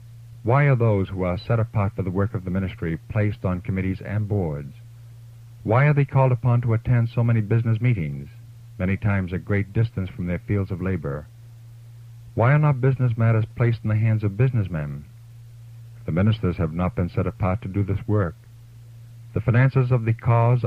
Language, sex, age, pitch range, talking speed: English, male, 50-69, 95-115 Hz, 190 wpm